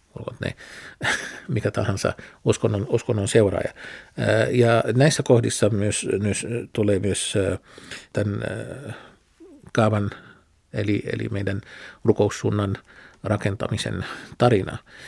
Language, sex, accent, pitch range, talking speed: Finnish, male, native, 105-115 Hz, 80 wpm